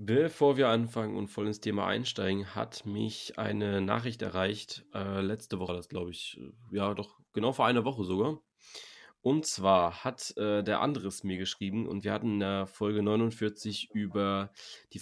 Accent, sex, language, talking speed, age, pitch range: German, male, German, 170 wpm, 20-39, 100-115 Hz